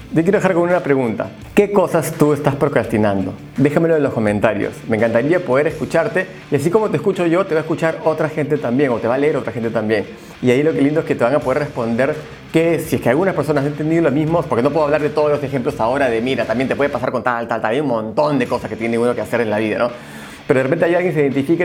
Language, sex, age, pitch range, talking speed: Spanish, male, 30-49, 120-160 Hz, 285 wpm